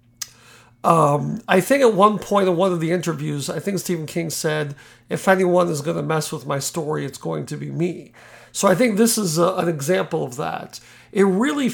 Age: 50-69